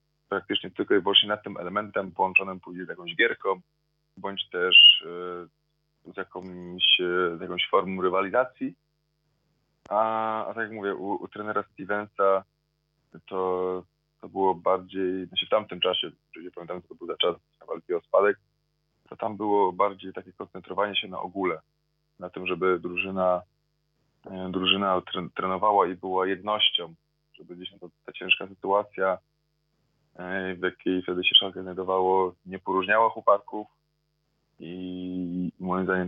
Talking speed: 135 wpm